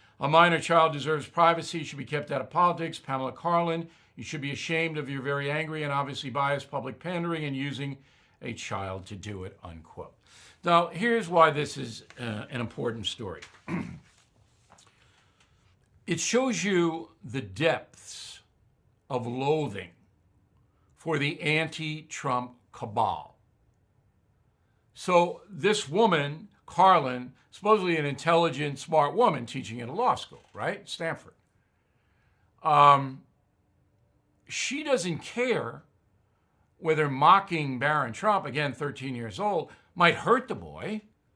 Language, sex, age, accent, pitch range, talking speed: English, male, 60-79, American, 120-170 Hz, 125 wpm